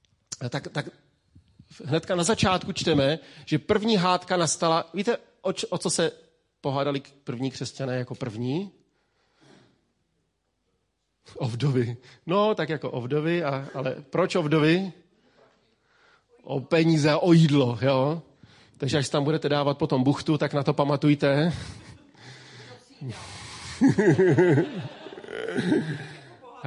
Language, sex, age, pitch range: Czech, male, 40-59, 135-175 Hz